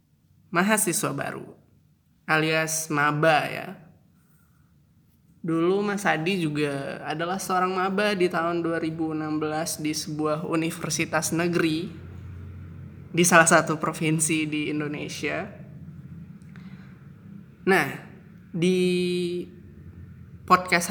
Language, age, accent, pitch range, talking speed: Indonesian, 20-39, native, 155-180 Hz, 80 wpm